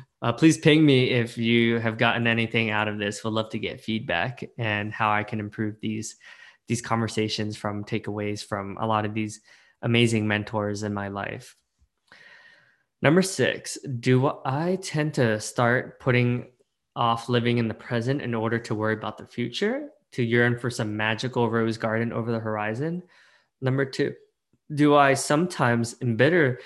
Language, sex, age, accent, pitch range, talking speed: English, male, 20-39, American, 110-140 Hz, 165 wpm